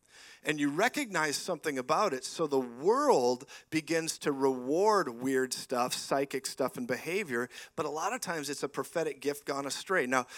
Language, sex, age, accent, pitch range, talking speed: English, male, 50-69, American, 140-180 Hz, 175 wpm